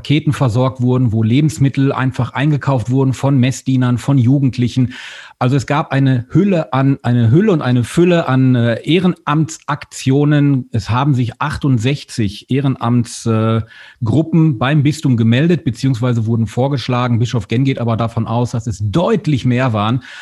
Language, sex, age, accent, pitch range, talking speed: German, male, 40-59, German, 125-175 Hz, 145 wpm